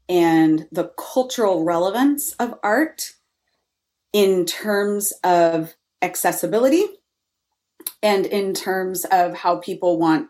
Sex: female